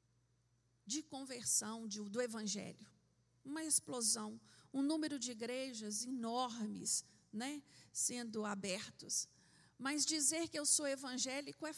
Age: 50-69